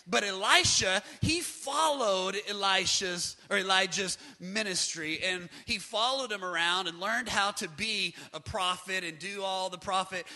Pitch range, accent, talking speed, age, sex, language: 180-225 Hz, American, 145 wpm, 30-49, male, English